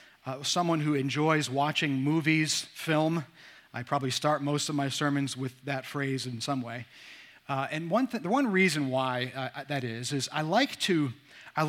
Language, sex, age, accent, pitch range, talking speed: English, male, 40-59, American, 140-175 Hz, 180 wpm